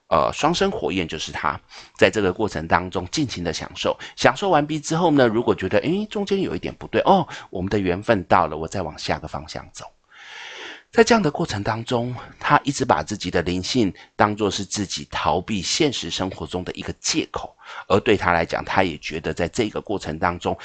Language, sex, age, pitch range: Chinese, male, 30-49, 85-120 Hz